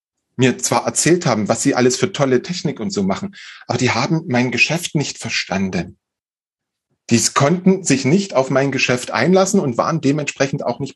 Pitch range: 115-180 Hz